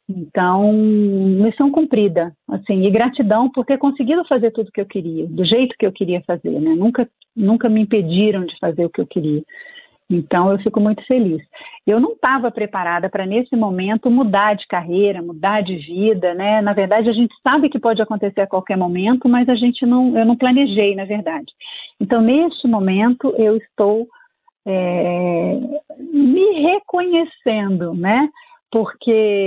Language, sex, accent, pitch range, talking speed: Portuguese, female, Brazilian, 190-255 Hz, 165 wpm